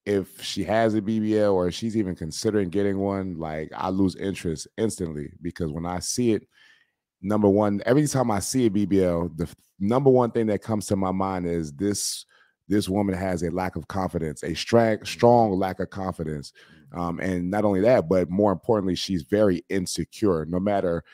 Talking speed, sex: 190 wpm, male